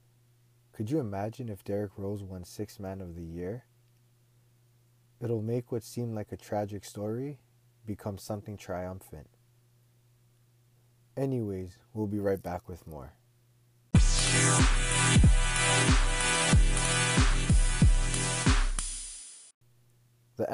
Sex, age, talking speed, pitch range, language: male, 20-39, 90 wpm, 105-120 Hz, English